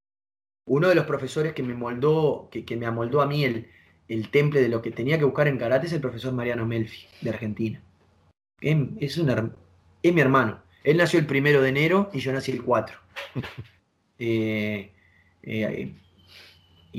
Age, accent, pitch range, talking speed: 20-39, Argentinian, 110-145 Hz, 175 wpm